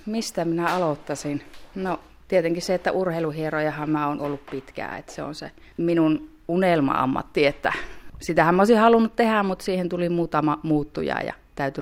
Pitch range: 140-175 Hz